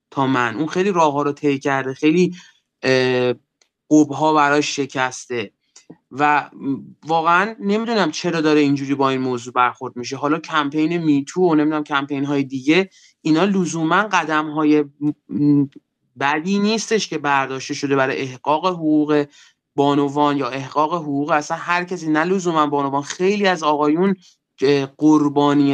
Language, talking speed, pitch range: Persian, 125 wpm, 140-175 Hz